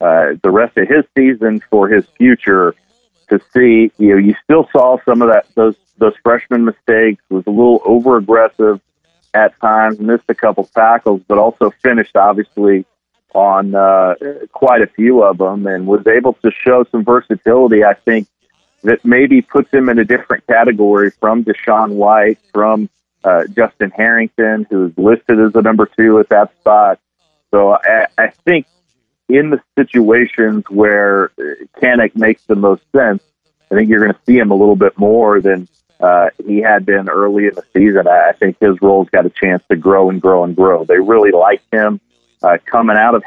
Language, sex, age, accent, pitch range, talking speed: English, male, 40-59, American, 100-120 Hz, 185 wpm